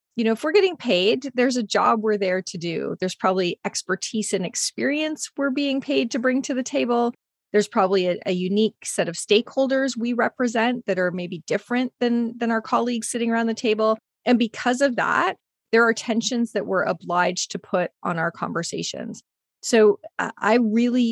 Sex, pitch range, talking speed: female, 185-235 Hz, 190 wpm